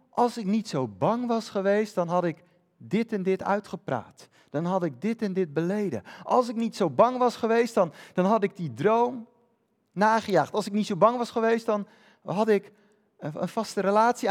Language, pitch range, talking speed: Dutch, 185-225 Hz, 205 wpm